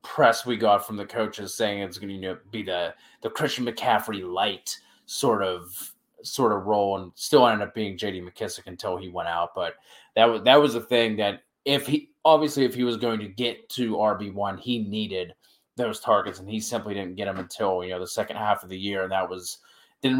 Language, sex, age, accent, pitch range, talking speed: English, male, 20-39, American, 100-120 Hz, 235 wpm